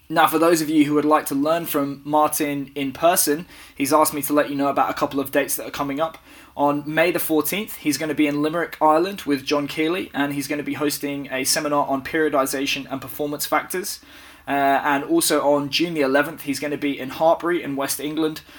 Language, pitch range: English, 140-155 Hz